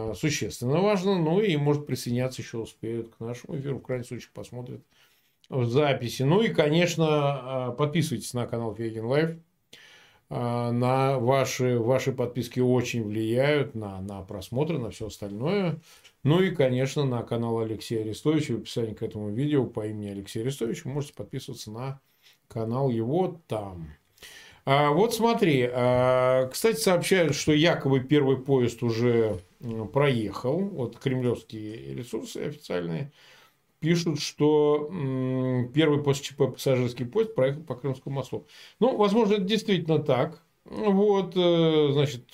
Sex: male